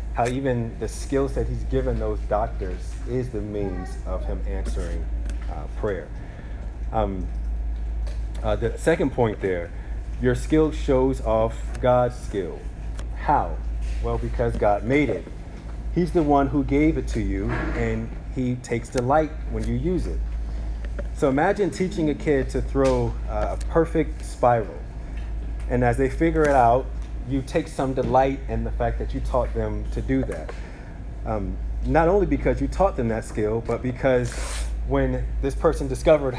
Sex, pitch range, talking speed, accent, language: male, 95-130 Hz, 160 wpm, American, English